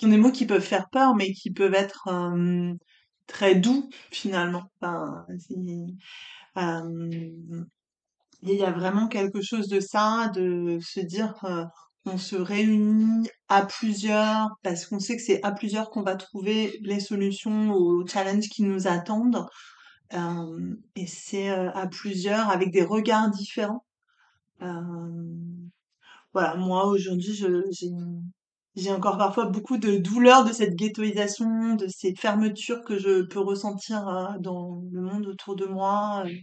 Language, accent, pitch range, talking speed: French, French, 185-215 Hz, 145 wpm